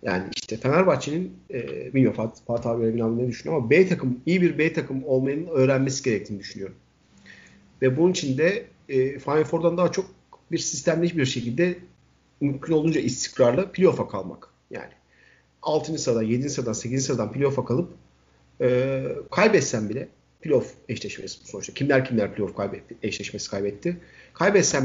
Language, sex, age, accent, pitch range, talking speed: Turkish, male, 50-69, native, 120-170 Hz, 145 wpm